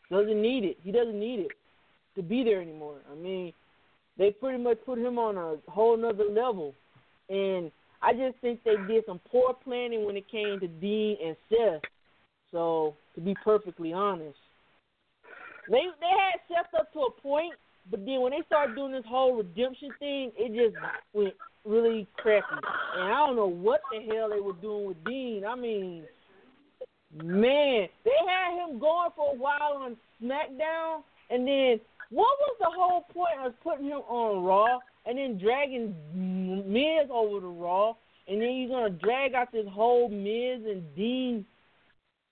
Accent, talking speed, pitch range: American, 175 wpm, 200-280 Hz